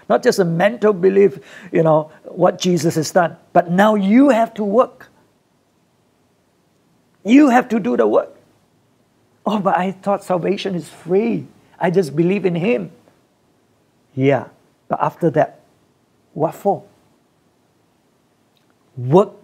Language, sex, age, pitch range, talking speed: English, male, 60-79, 145-195 Hz, 130 wpm